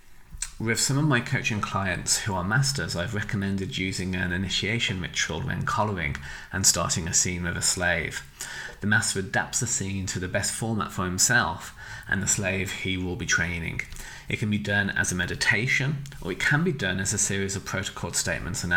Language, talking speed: English, 195 wpm